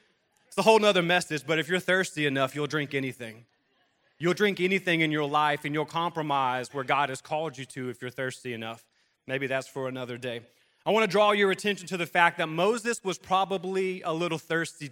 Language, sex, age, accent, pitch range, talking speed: English, male, 30-49, American, 150-200 Hz, 210 wpm